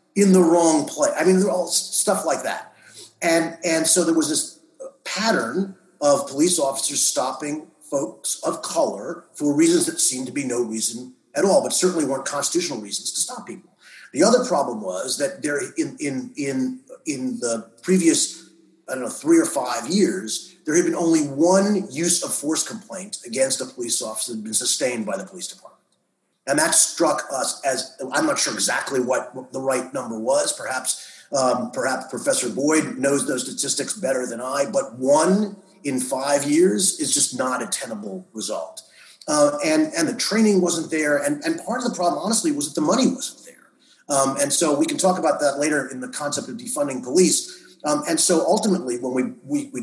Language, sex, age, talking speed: English, male, 30-49, 195 wpm